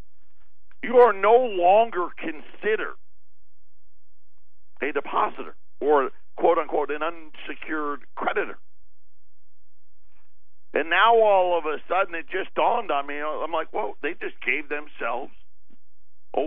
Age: 60-79